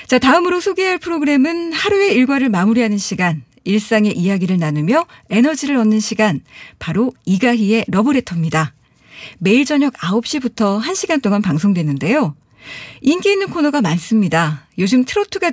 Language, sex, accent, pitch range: Korean, female, native, 190-275 Hz